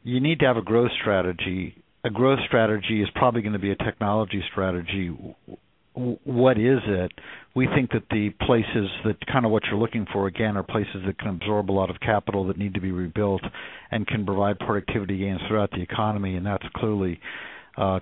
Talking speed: 200 wpm